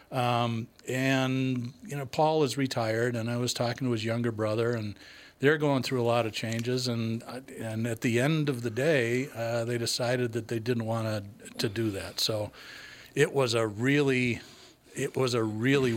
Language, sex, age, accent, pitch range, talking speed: English, male, 50-69, American, 115-135 Hz, 190 wpm